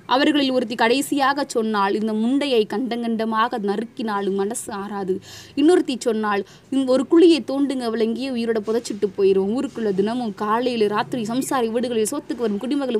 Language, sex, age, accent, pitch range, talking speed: Tamil, female, 20-39, native, 210-265 Hz, 125 wpm